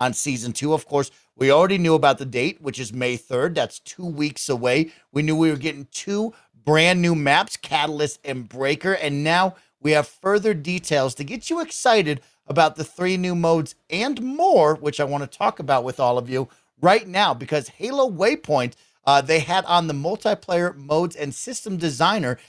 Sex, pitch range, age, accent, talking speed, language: male, 130-175 Hz, 40-59, American, 195 wpm, English